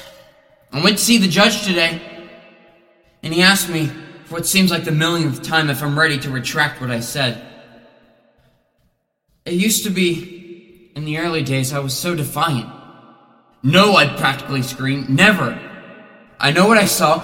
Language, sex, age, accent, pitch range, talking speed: English, male, 20-39, American, 130-170 Hz, 165 wpm